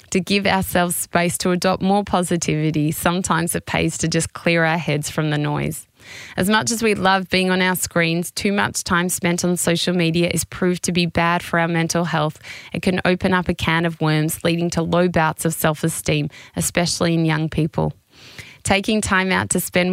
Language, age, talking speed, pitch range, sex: English, 20-39, 200 wpm, 160-185 Hz, female